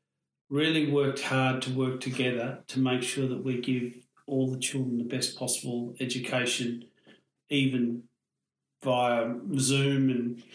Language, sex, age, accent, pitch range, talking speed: English, male, 40-59, Australian, 130-145 Hz, 130 wpm